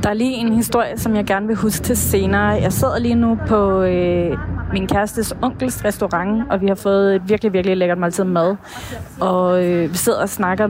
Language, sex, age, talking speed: Danish, female, 30-49, 215 wpm